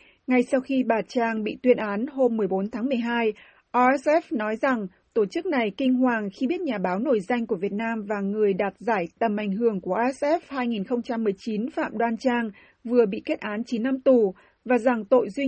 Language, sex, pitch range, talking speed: Vietnamese, female, 220-265 Hz, 205 wpm